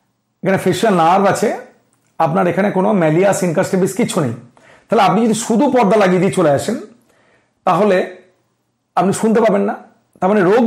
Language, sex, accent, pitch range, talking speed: Bengali, male, native, 160-210 Hz, 135 wpm